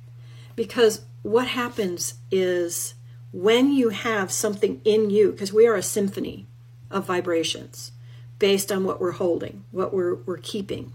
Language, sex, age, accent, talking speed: English, female, 40-59, American, 145 wpm